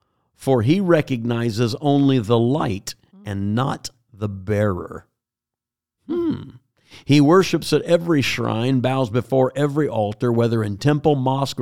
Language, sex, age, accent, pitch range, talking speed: English, male, 50-69, American, 120-150 Hz, 125 wpm